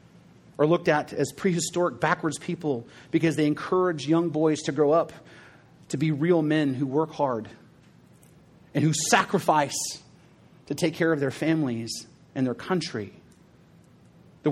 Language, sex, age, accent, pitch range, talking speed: English, male, 40-59, American, 145-185 Hz, 145 wpm